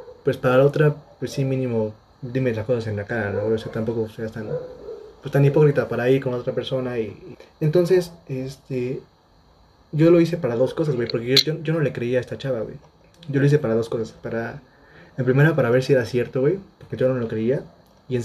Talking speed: 225 wpm